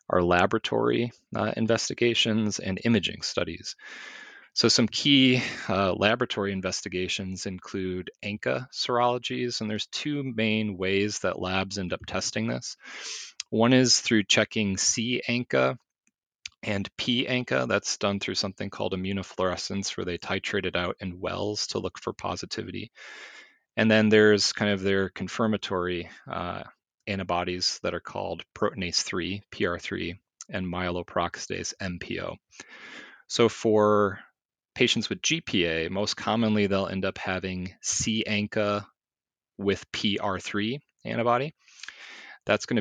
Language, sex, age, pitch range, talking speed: English, male, 30-49, 90-110 Hz, 120 wpm